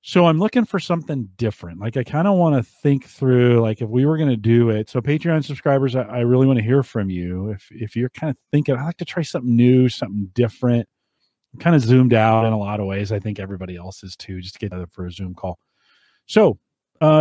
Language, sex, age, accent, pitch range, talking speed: English, male, 40-59, American, 105-140 Hz, 250 wpm